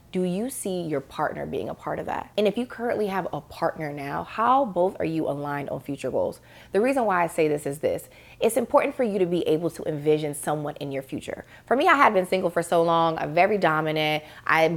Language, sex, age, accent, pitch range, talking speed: English, female, 20-39, American, 155-200 Hz, 245 wpm